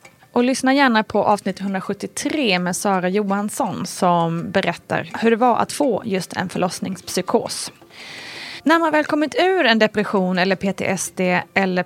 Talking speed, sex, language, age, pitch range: 145 wpm, female, Swedish, 20-39, 185-240 Hz